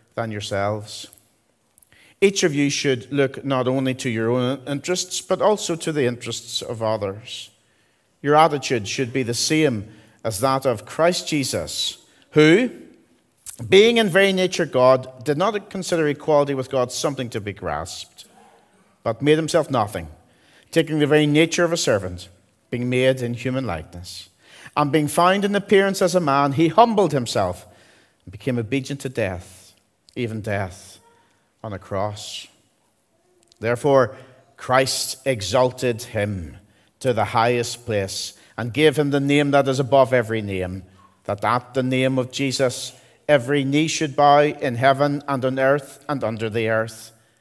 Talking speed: 155 wpm